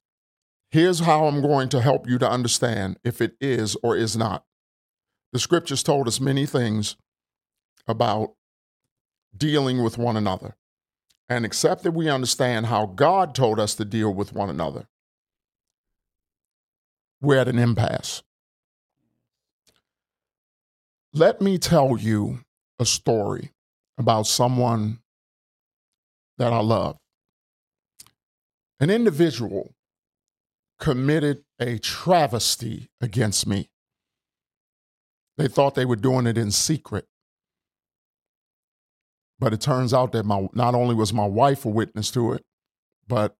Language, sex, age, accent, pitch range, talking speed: English, male, 50-69, American, 110-140 Hz, 120 wpm